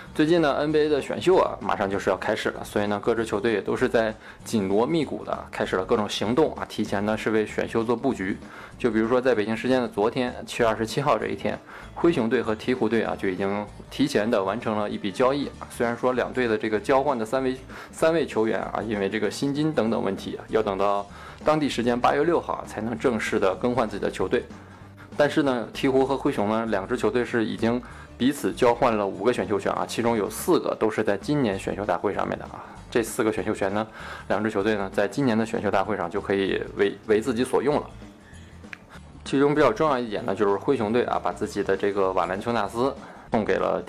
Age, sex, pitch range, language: 20-39, male, 100-125 Hz, Chinese